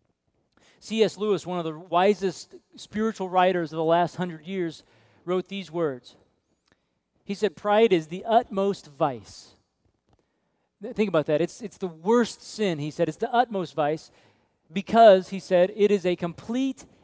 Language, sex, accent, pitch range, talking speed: English, male, American, 155-215 Hz, 155 wpm